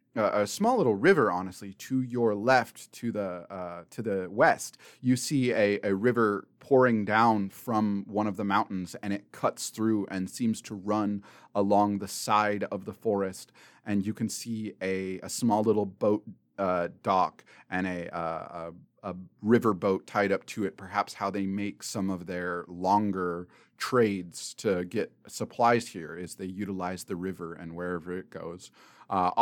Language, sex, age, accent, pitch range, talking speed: English, male, 30-49, American, 95-110 Hz, 175 wpm